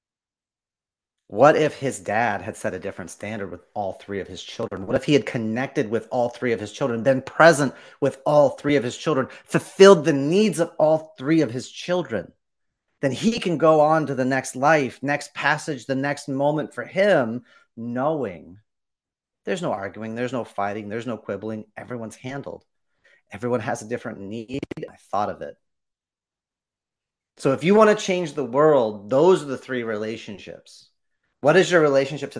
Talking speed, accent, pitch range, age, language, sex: 180 wpm, American, 115-150 Hz, 30-49, English, male